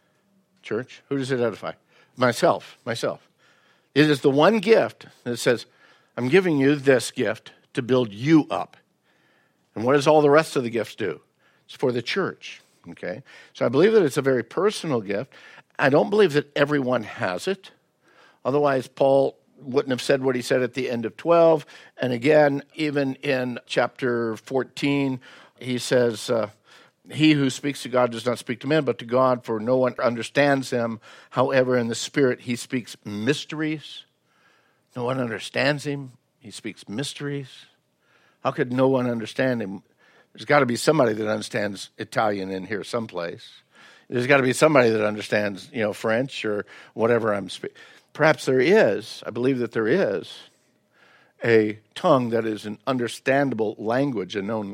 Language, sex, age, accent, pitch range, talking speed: English, male, 60-79, American, 115-145 Hz, 170 wpm